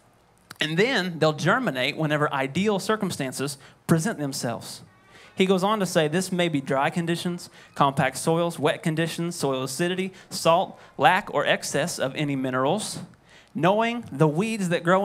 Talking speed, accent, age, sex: 150 wpm, American, 30-49, male